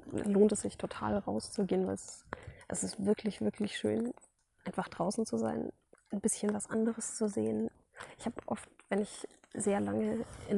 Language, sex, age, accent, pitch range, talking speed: German, female, 20-39, German, 195-215 Hz, 170 wpm